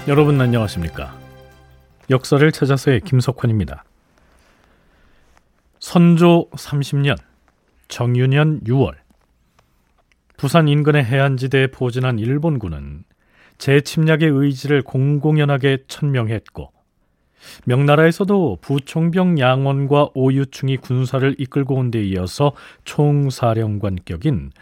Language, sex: Korean, male